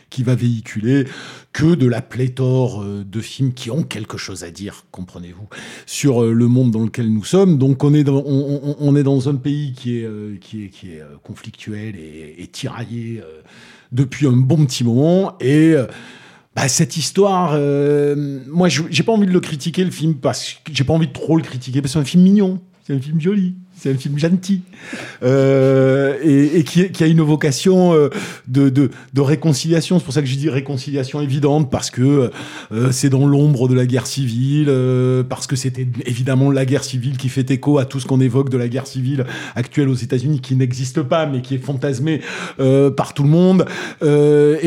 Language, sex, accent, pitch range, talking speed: French, male, French, 125-150 Hz, 205 wpm